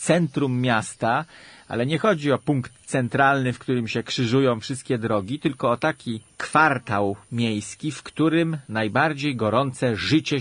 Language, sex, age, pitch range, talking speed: Polish, male, 40-59, 110-155 Hz, 140 wpm